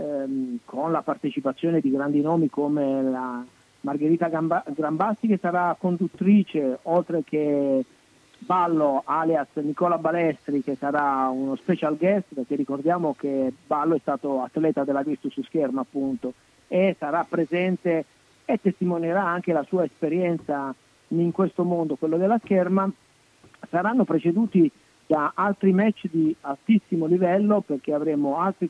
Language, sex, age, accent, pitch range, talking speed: Italian, male, 50-69, native, 145-185 Hz, 130 wpm